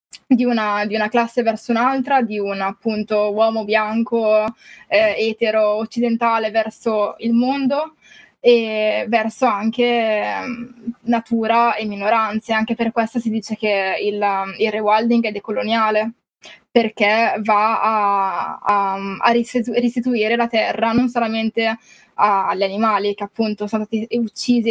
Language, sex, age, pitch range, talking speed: Italian, female, 10-29, 210-235 Hz, 130 wpm